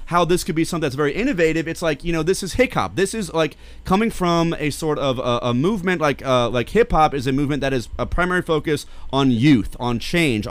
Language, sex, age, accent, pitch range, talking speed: English, male, 30-49, American, 130-175 Hz, 240 wpm